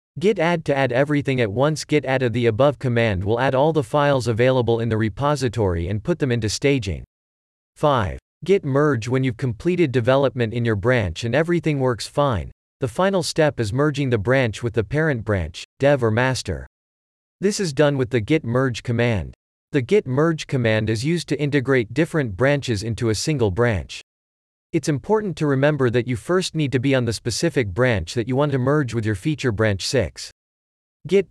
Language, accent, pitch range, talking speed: English, American, 110-150 Hz, 195 wpm